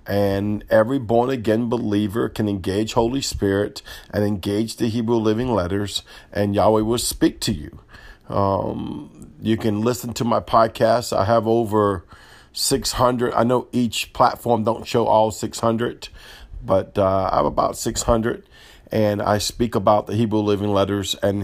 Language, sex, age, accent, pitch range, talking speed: English, male, 50-69, American, 95-115 Hz, 150 wpm